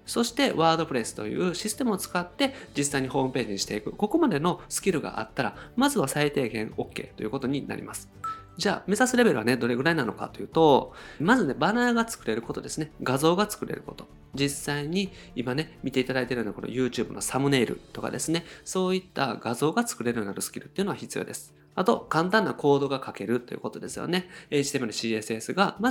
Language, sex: Japanese, male